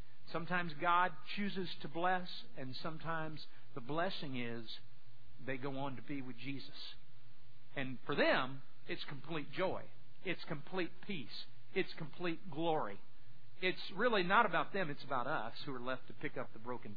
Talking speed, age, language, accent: 160 wpm, 50-69, English, American